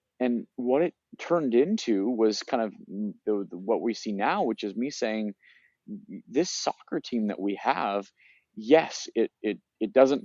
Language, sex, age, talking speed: English, male, 30-49, 170 wpm